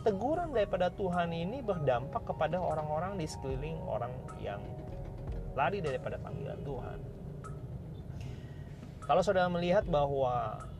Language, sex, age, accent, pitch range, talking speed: Indonesian, male, 30-49, native, 125-165 Hz, 105 wpm